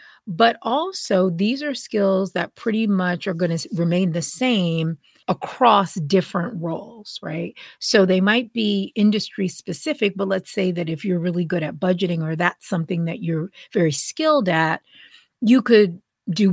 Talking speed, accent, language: 160 wpm, American, English